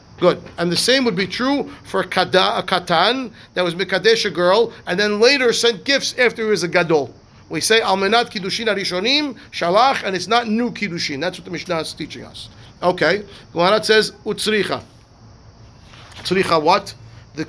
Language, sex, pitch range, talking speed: English, male, 170-215 Hz, 170 wpm